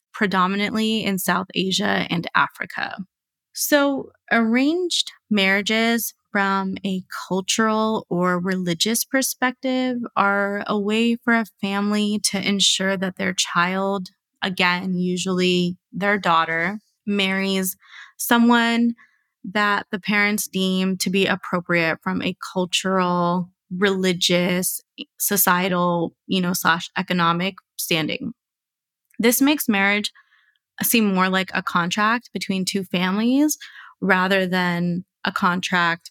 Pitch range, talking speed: 180-220 Hz, 105 wpm